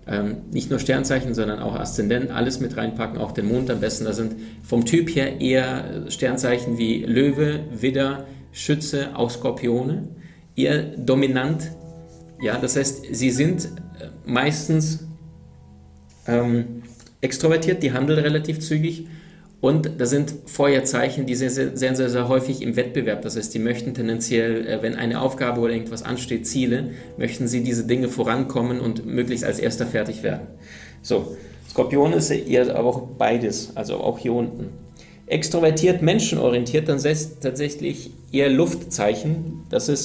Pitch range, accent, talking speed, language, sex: 120-145 Hz, German, 145 wpm, German, male